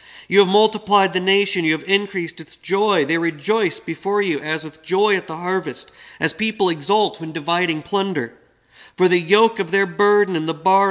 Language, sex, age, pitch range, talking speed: English, male, 40-59, 170-205 Hz, 195 wpm